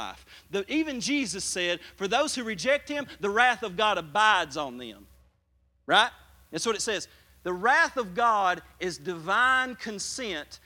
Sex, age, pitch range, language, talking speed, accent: male, 40-59, 130-210 Hz, English, 150 wpm, American